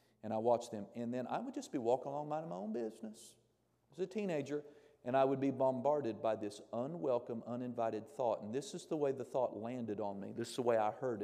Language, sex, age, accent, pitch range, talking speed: English, male, 40-59, American, 115-160 Hz, 245 wpm